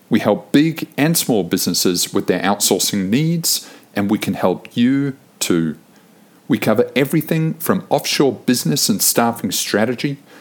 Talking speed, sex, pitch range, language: 145 wpm, male, 105-145 Hz, English